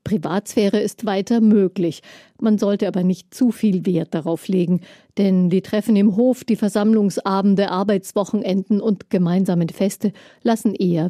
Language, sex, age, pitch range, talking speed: German, female, 50-69, 180-210 Hz, 140 wpm